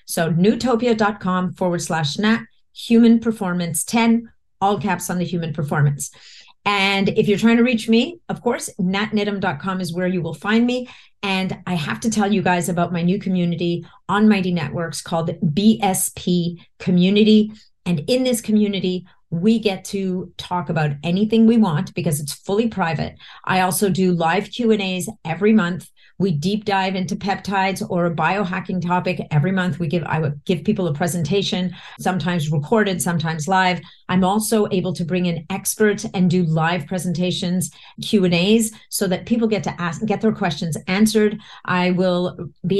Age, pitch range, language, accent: 40-59, 180-215 Hz, English, American